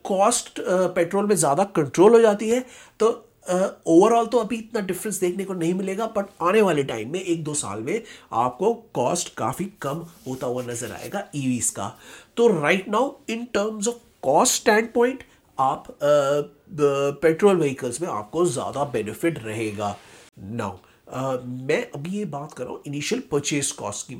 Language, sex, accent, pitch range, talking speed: Hindi, male, native, 140-205 Hz, 165 wpm